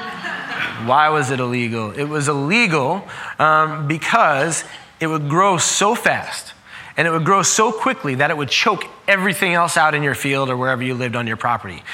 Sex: male